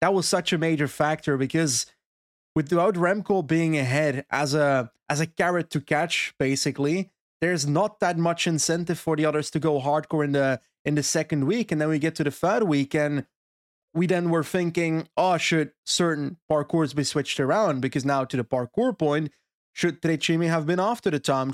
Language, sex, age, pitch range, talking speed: English, male, 30-49, 140-180 Hz, 195 wpm